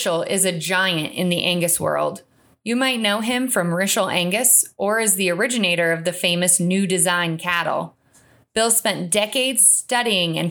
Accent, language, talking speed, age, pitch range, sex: American, English, 165 wpm, 20-39, 175-230 Hz, female